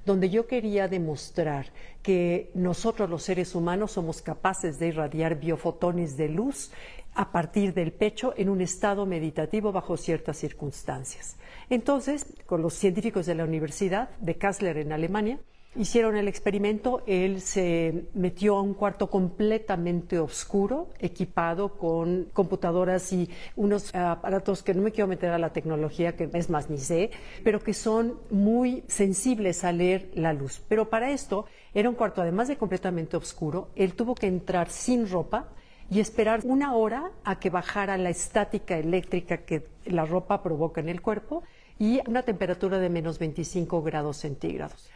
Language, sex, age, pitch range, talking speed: Spanish, female, 50-69, 170-210 Hz, 155 wpm